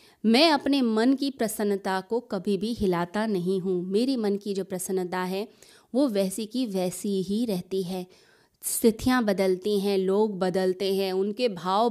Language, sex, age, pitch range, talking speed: Hindi, female, 20-39, 185-225 Hz, 160 wpm